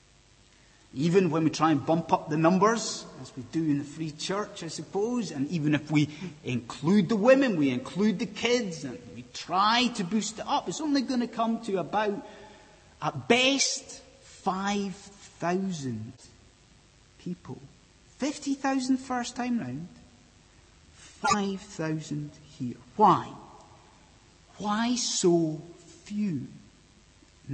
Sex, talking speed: male, 125 wpm